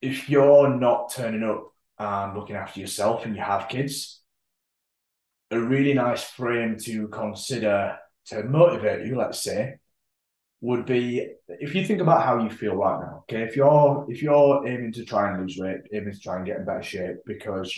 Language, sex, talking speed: English, male, 185 wpm